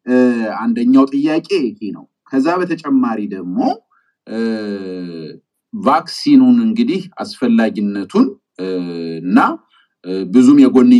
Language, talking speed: English, 100 wpm